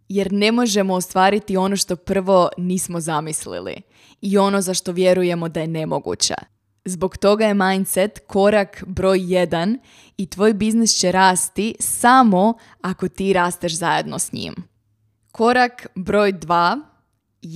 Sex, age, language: female, 20-39, Croatian